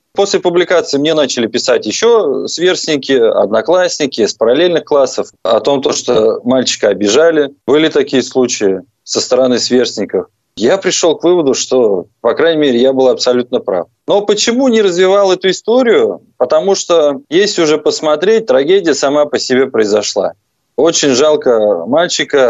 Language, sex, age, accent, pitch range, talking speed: Russian, male, 20-39, native, 135-195 Hz, 140 wpm